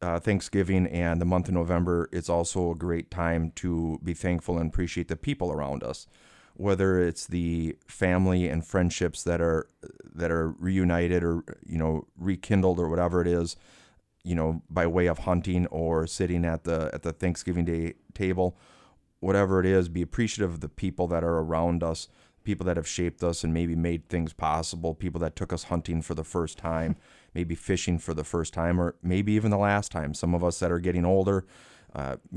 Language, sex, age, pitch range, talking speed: English, male, 30-49, 80-90 Hz, 195 wpm